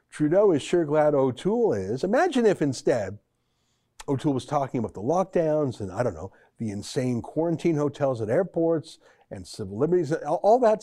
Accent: American